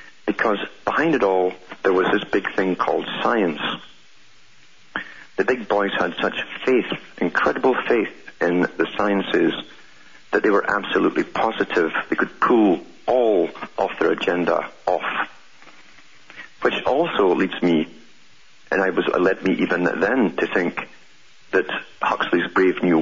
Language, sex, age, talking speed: English, male, 50-69, 135 wpm